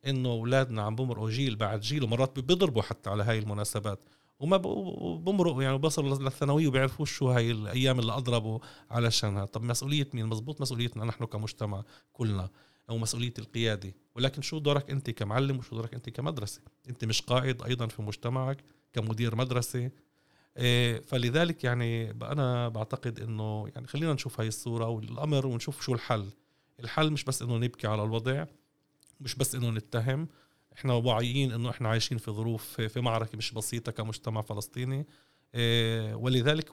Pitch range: 115-135 Hz